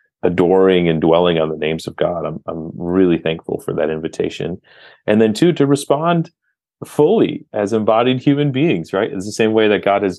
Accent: American